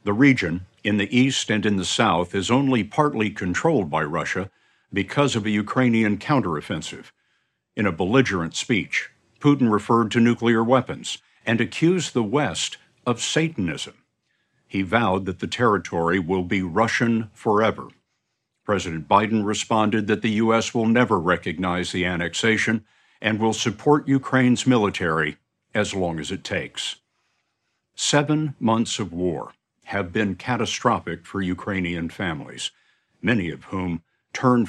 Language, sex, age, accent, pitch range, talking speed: English, male, 60-79, American, 95-125 Hz, 135 wpm